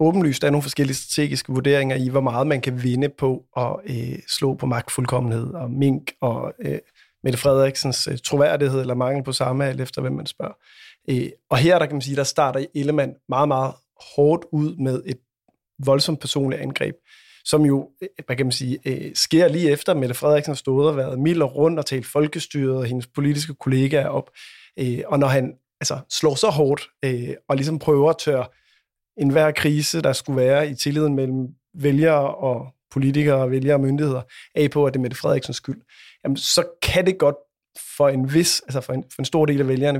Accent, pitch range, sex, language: native, 130-150 Hz, male, Danish